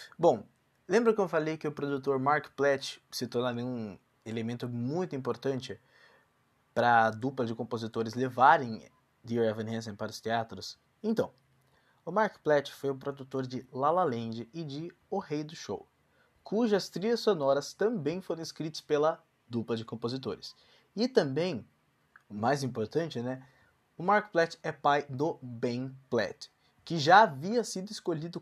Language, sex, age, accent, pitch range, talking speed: Portuguese, male, 20-39, Brazilian, 120-160 Hz, 155 wpm